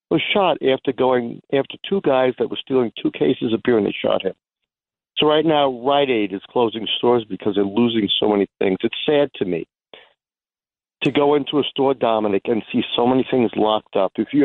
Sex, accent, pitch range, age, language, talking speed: male, American, 110-140 Hz, 50-69, English, 210 wpm